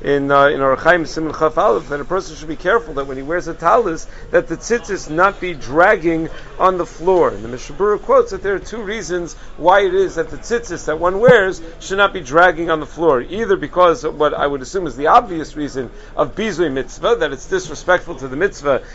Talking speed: 230 wpm